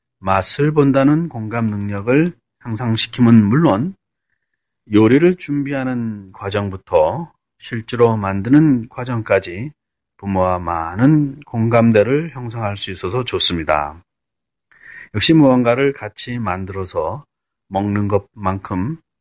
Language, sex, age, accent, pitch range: Korean, male, 30-49, native, 100-140 Hz